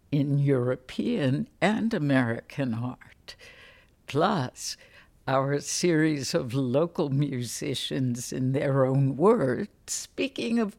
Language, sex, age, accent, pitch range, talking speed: English, female, 60-79, American, 130-185 Hz, 95 wpm